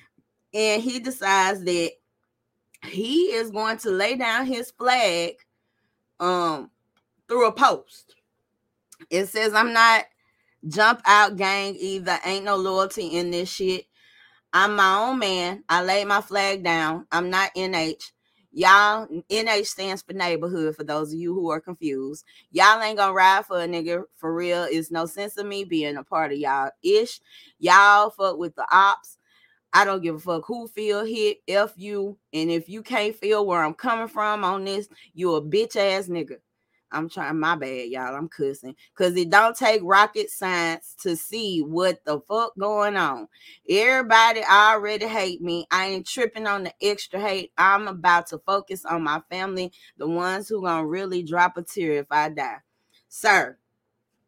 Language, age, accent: English, 20-39, American